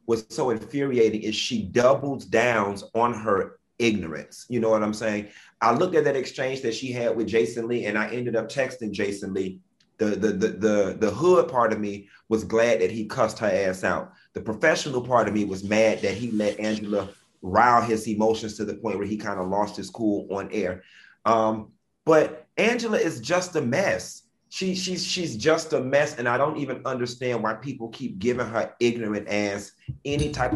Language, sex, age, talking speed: English, male, 30-49, 205 wpm